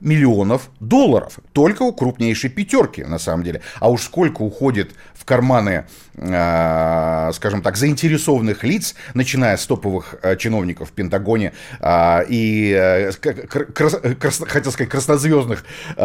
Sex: male